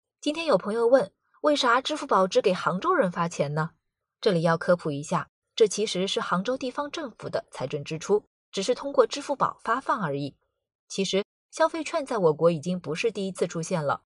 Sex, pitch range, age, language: female, 170-265 Hz, 20-39, Chinese